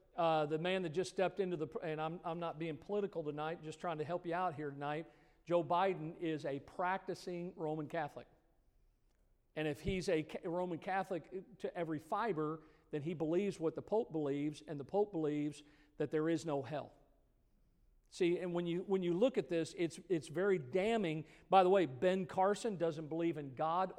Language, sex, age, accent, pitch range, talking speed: English, male, 50-69, American, 155-185 Hz, 195 wpm